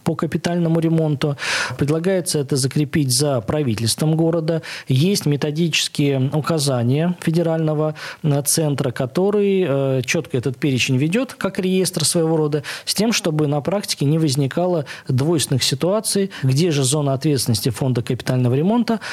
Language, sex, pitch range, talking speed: Russian, male, 130-160 Hz, 120 wpm